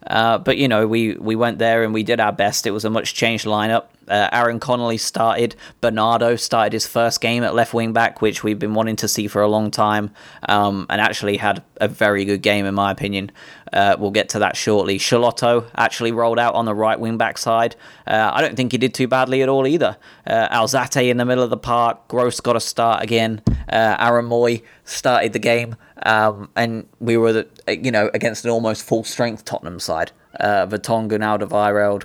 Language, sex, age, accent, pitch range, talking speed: English, male, 20-39, British, 105-115 Hz, 210 wpm